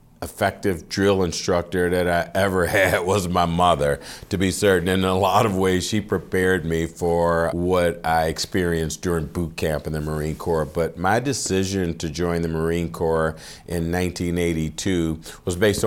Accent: American